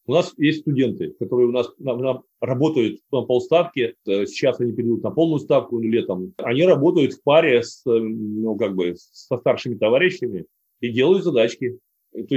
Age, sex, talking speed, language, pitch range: 30-49, male, 165 wpm, Russian, 125-175 Hz